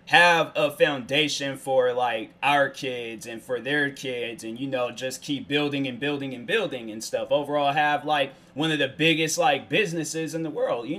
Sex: male